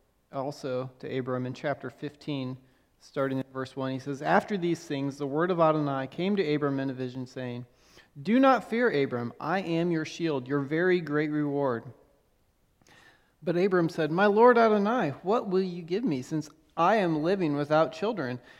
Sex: male